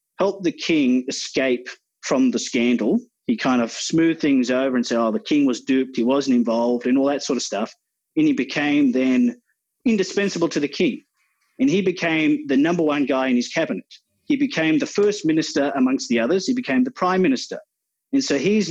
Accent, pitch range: Australian, 130-200 Hz